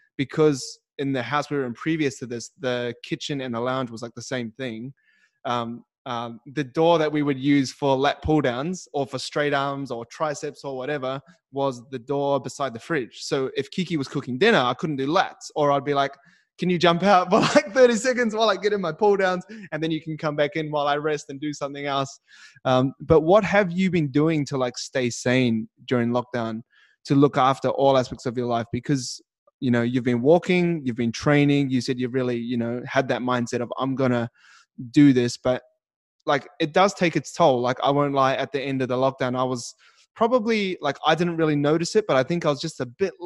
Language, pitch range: English, 125-155 Hz